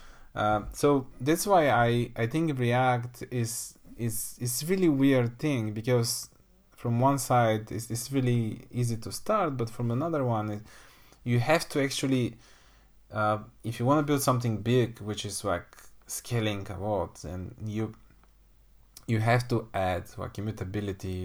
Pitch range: 105-130 Hz